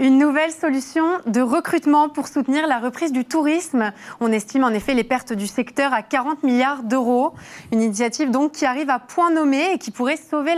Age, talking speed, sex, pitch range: 30-49, 200 wpm, female, 240-295 Hz